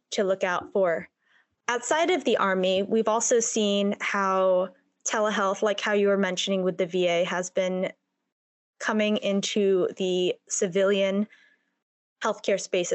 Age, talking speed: 20-39, 135 wpm